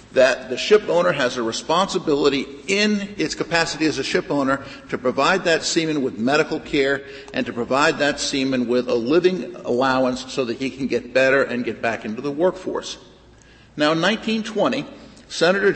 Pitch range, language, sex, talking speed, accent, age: 135-180 Hz, English, male, 175 wpm, American, 50-69